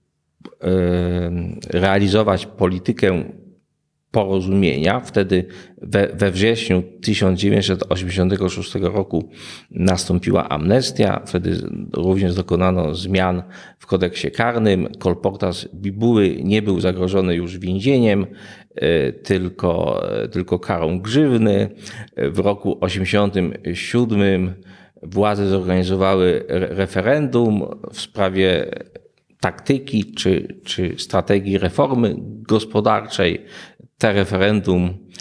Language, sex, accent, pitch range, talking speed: Polish, male, native, 90-115 Hz, 75 wpm